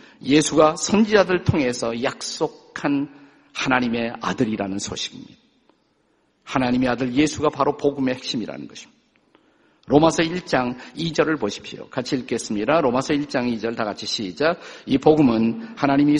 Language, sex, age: Korean, male, 50-69